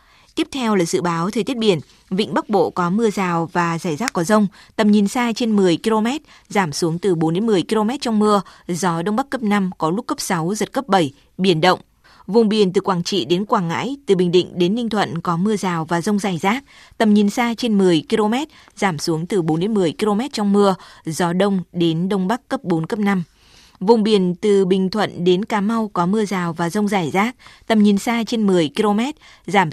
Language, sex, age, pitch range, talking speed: Vietnamese, female, 20-39, 175-215 Hz, 230 wpm